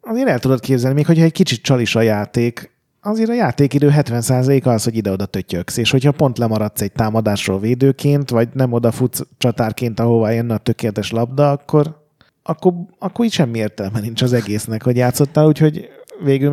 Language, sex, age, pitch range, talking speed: Hungarian, male, 30-49, 110-140 Hz, 180 wpm